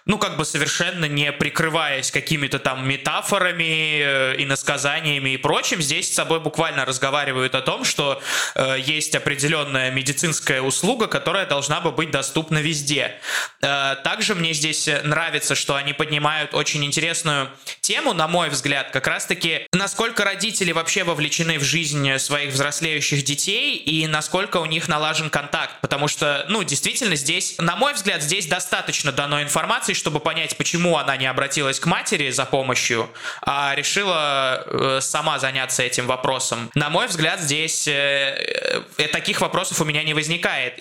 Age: 20-39